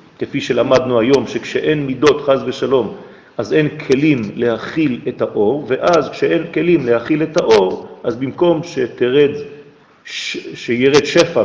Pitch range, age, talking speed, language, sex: 135-180 Hz, 40-59, 130 wpm, French, male